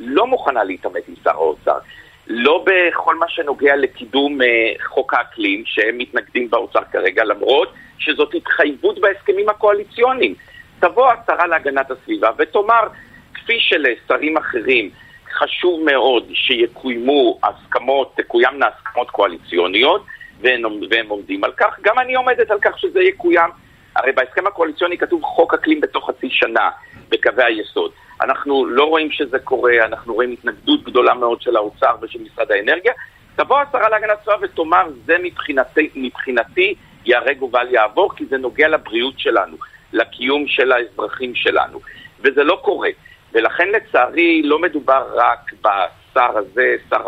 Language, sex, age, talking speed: Hebrew, male, 50-69, 135 wpm